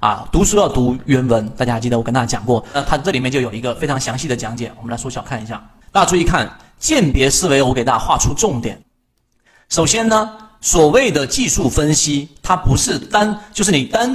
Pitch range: 125-195 Hz